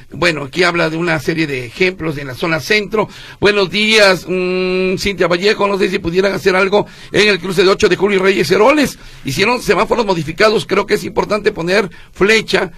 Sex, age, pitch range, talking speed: male, 50-69, 170-210 Hz, 195 wpm